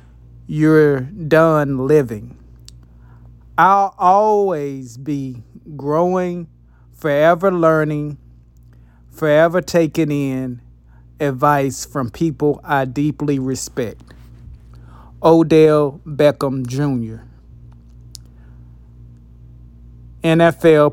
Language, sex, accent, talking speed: English, male, American, 65 wpm